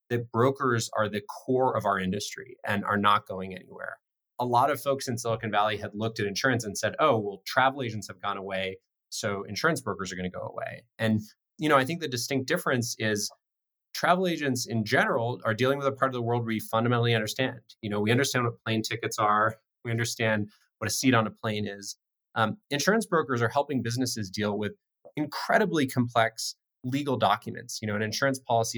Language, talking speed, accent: English, 205 wpm, American